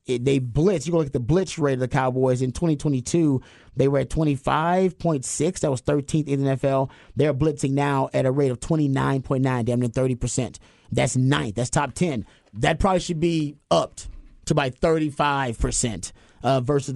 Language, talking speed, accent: English, 175 wpm, American